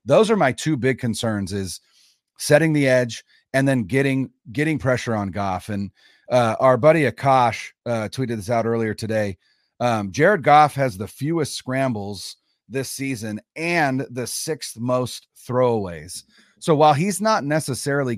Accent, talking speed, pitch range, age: American, 155 wpm, 115-145 Hz, 30-49